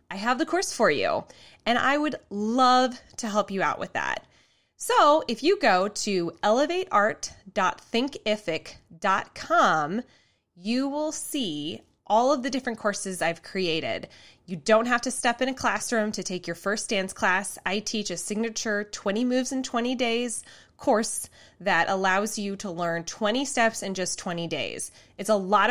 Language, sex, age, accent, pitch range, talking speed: English, female, 20-39, American, 190-270 Hz, 165 wpm